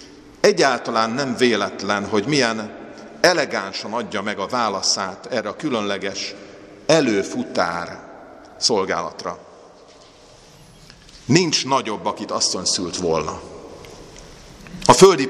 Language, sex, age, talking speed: Hungarian, male, 50-69, 90 wpm